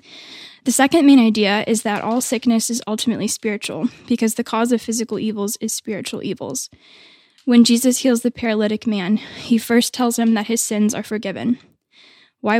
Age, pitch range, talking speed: 10-29, 210-240 Hz, 170 wpm